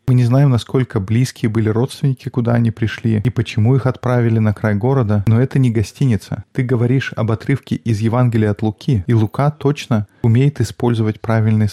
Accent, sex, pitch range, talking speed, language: native, male, 110-125 Hz, 180 wpm, Russian